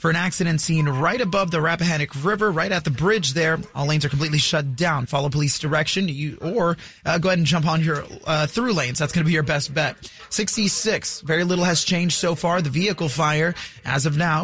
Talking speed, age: 230 wpm, 30-49